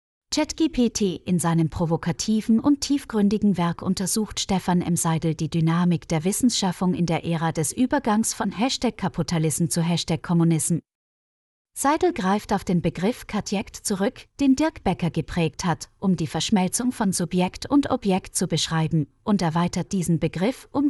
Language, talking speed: German, 145 wpm